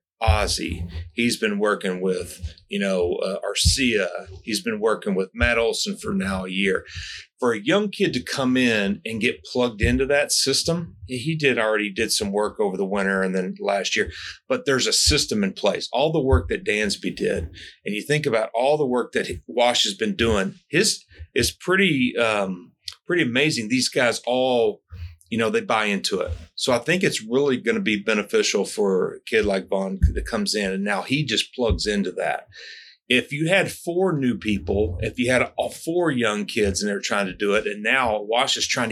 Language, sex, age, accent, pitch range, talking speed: English, male, 40-59, American, 95-145 Hz, 205 wpm